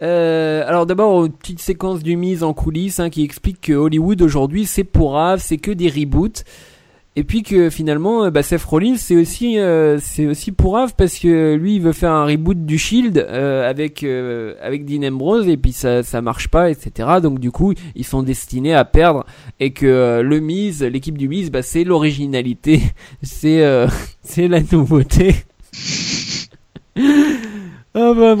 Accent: French